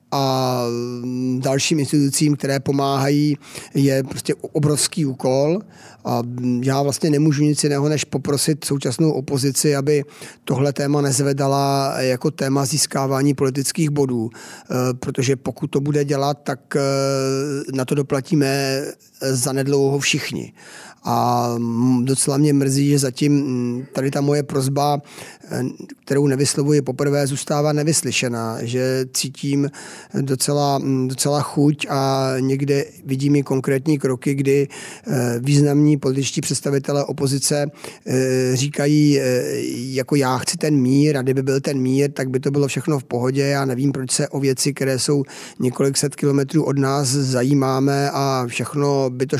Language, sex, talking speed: Czech, male, 130 wpm